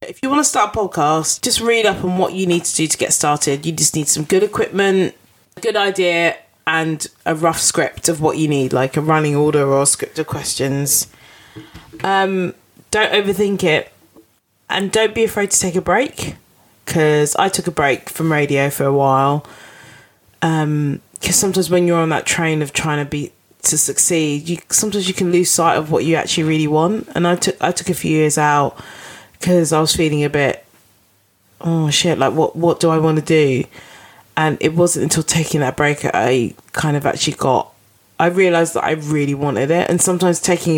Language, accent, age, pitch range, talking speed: English, British, 20-39, 145-175 Hz, 205 wpm